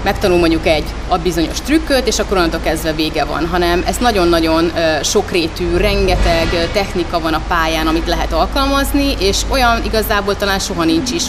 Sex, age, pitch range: female, 30-49, 170-210 Hz